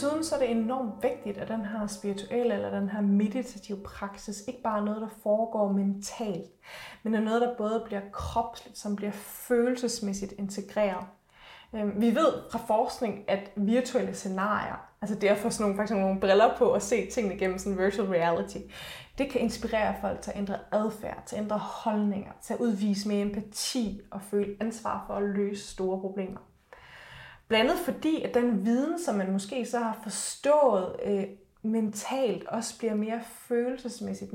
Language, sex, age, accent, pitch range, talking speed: Danish, female, 20-39, native, 200-235 Hz, 170 wpm